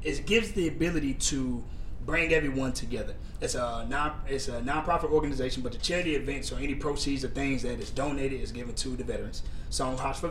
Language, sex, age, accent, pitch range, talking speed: English, male, 20-39, American, 130-150 Hz, 205 wpm